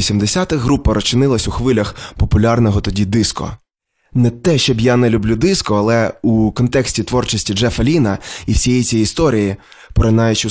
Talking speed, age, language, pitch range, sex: 150 wpm, 20-39, Ukrainian, 100-125 Hz, male